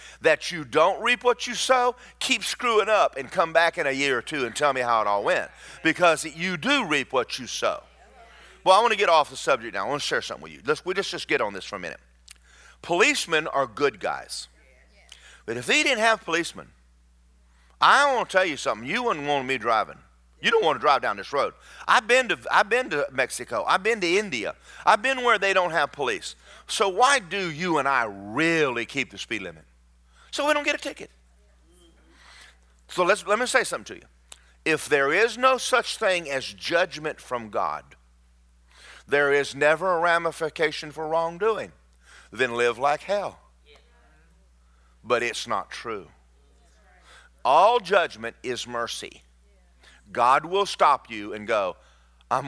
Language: English